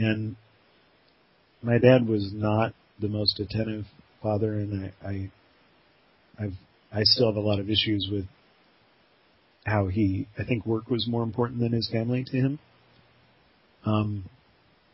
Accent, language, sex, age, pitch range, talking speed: American, English, male, 40-59, 100-115 Hz, 140 wpm